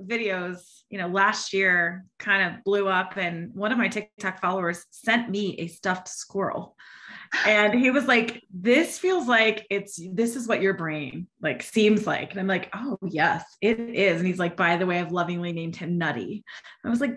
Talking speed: 200 wpm